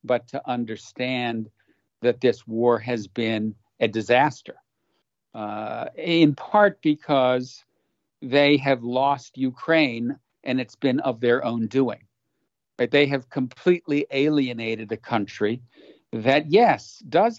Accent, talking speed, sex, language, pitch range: American, 120 wpm, male, English, 120-145 Hz